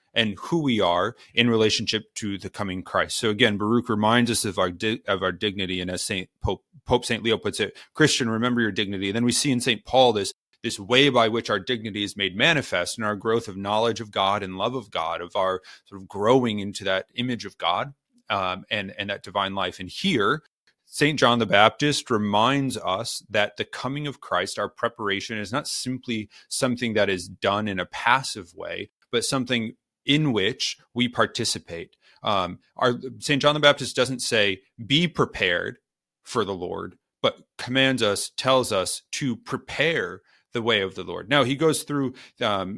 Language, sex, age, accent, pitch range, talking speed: English, male, 30-49, American, 100-130 Hz, 195 wpm